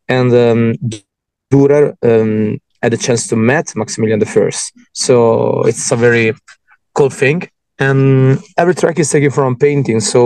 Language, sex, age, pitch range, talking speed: English, male, 20-39, 115-135 Hz, 140 wpm